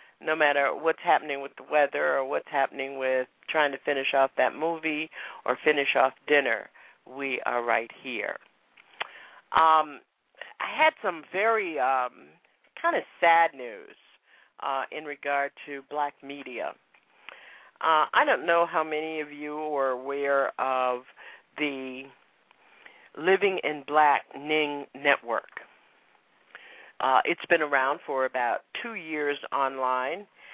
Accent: American